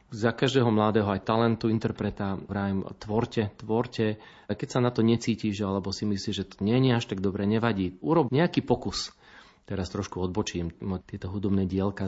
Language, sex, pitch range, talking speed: Slovak, male, 95-120 Hz, 175 wpm